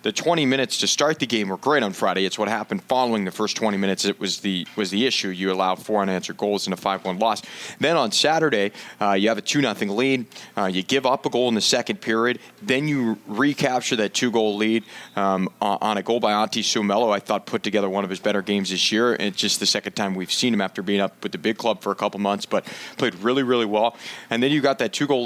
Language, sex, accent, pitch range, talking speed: English, male, American, 100-120 Hz, 260 wpm